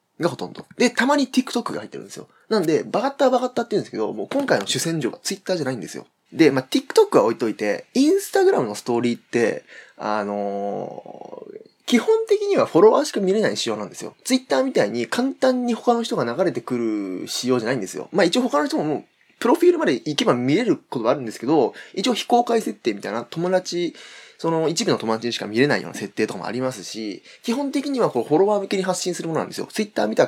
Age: 20-39